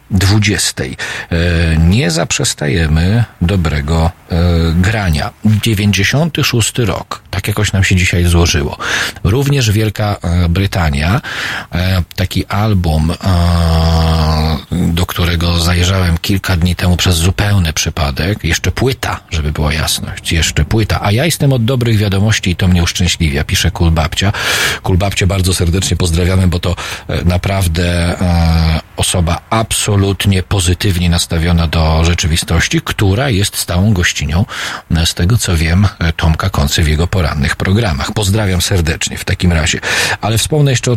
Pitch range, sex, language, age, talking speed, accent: 85-105 Hz, male, Polish, 40-59, 120 wpm, native